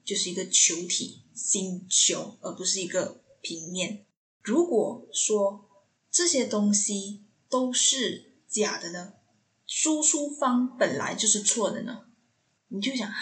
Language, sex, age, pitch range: Chinese, female, 10-29, 185-245 Hz